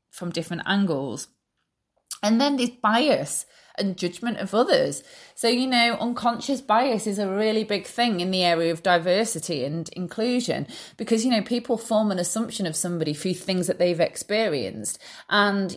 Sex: female